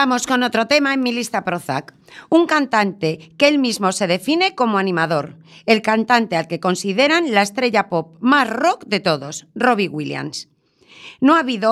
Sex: female